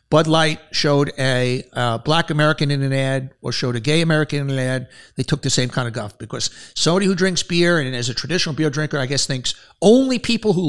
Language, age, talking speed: English, 60-79, 235 wpm